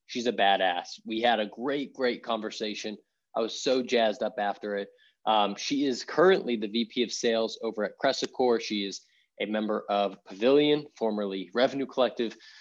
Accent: American